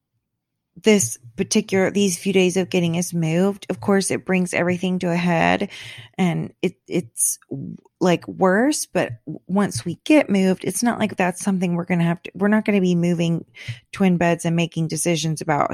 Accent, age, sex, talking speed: American, 20-39, female, 185 wpm